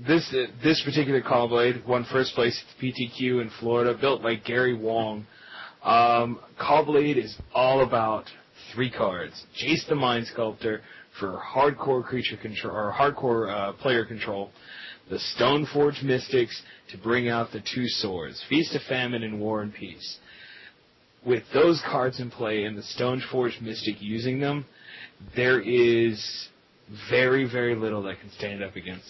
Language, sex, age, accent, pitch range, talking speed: English, male, 30-49, American, 110-130 Hz, 155 wpm